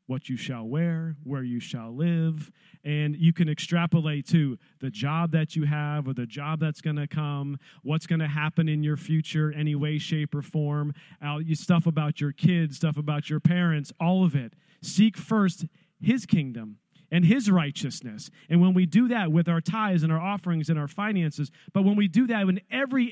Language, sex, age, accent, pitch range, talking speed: English, male, 40-59, American, 140-170 Hz, 200 wpm